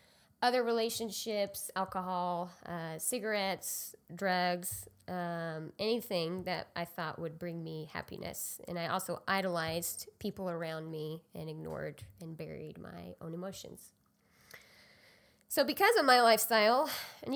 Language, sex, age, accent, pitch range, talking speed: English, female, 20-39, American, 175-220 Hz, 120 wpm